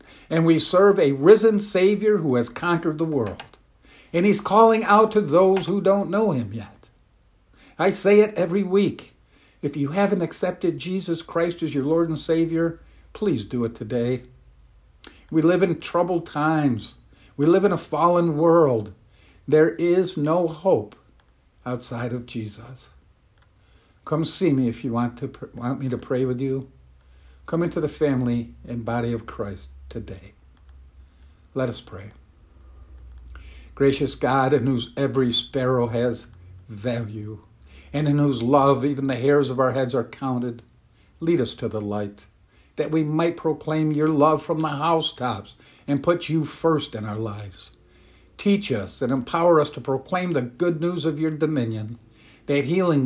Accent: American